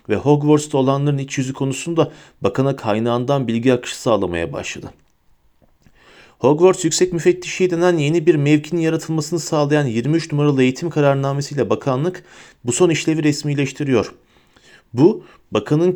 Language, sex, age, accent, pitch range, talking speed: Turkish, male, 40-59, native, 130-160 Hz, 120 wpm